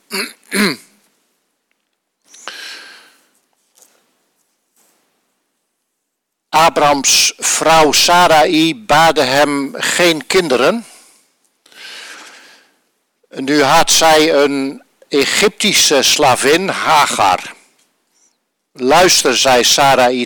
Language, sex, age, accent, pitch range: Dutch, male, 60-79, Dutch, 130-165 Hz